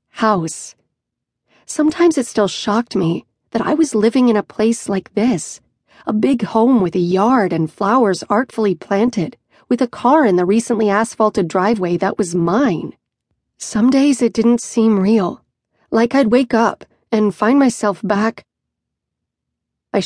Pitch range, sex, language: 190-230 Hz, female, English